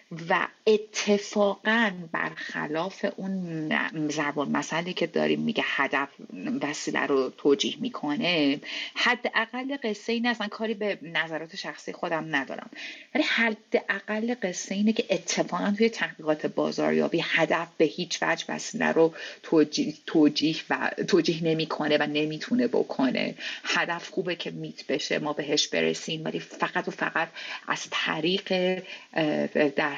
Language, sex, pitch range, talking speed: Persian, female, 155-215 Hz, 120 wpm